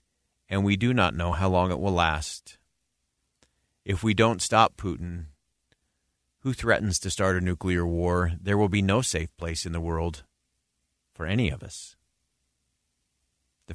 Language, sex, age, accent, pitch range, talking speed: English, male, 40-59, American, 80-100 Hz, 155 wpm